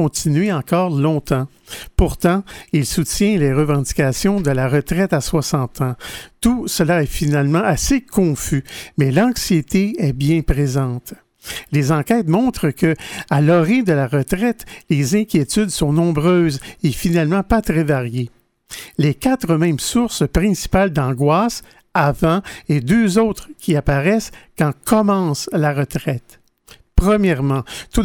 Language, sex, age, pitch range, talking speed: French, male, 50-69, 145-195 Hz, 130 wpm